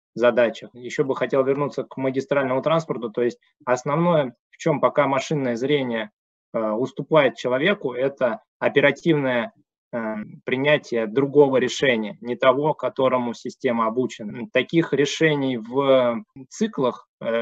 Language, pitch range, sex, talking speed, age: Russian, 115-140 Hz, male, 110 wpm, 20-39